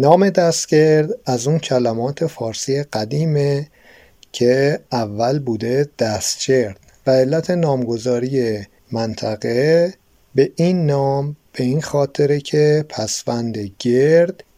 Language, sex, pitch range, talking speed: Persian, male, 115-150 Hz, 100 wpm